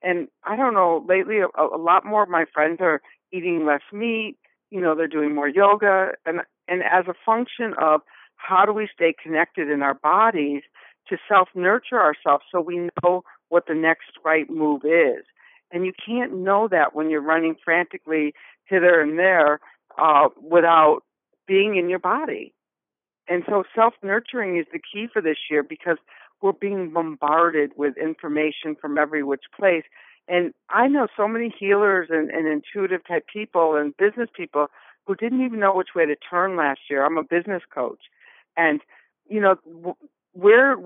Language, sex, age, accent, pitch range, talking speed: English, female, 60-79, American, 160-205 Hz, 170 wpm